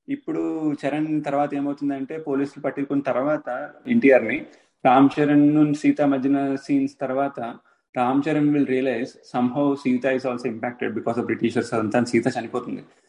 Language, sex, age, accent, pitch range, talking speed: Telugu, male, 20-39, native, 115-140 Hz, 135 wpm